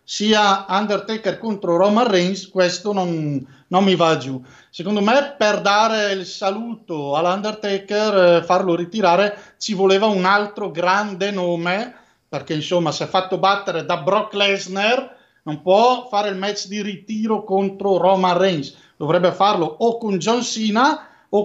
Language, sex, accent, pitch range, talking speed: Italian, male, native, 180-220 Hz, 150 wpm